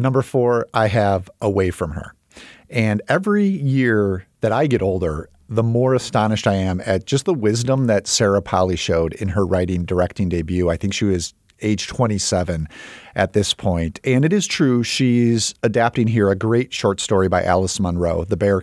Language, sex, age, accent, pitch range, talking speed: English, male, 40-59, American, 95-115 Hz, 185 wpm